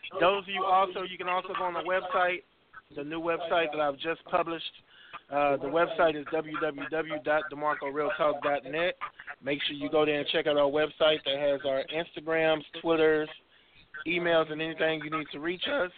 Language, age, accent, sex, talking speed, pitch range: English, 20-39, American, male, 175 wpm, 140-165 Hz